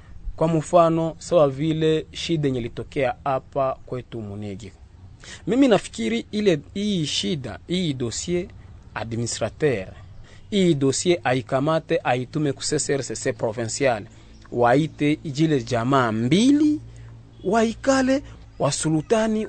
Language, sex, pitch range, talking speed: French, male, 110-155 Hz, 95 wpm